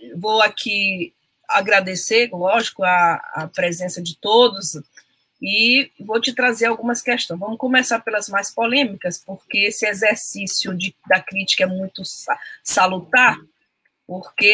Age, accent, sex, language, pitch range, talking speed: 20-39, Brazilian, female, Portuguese, 185-230 Hz, 125 wpm